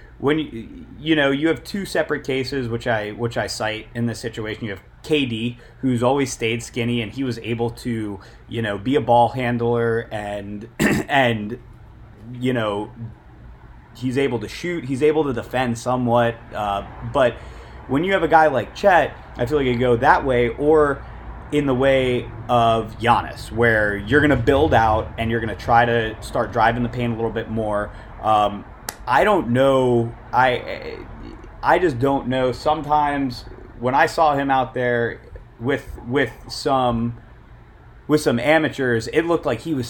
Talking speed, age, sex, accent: 170 wpm, 30-49, male, American